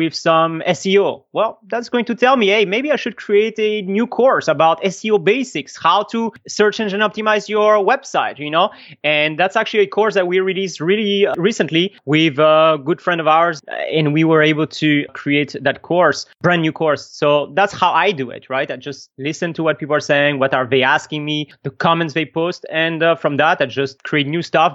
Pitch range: 155-210 Hz